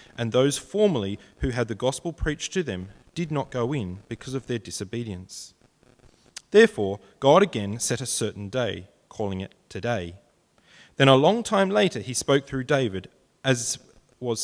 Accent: Australian